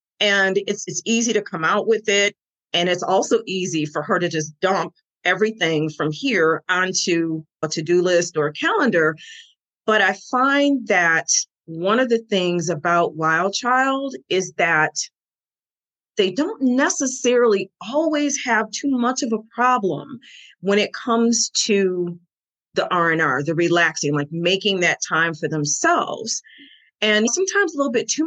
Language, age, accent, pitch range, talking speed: English, 40-59, American, 180-245 Hz, 155 wpm